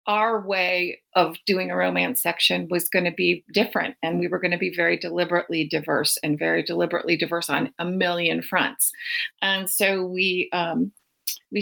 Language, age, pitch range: English, 40-59, 165-205 Hz